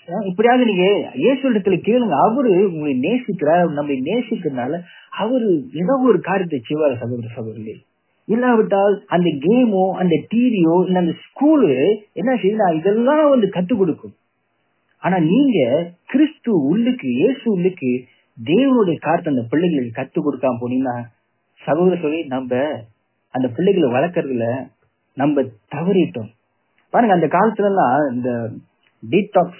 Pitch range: 130-200 Hz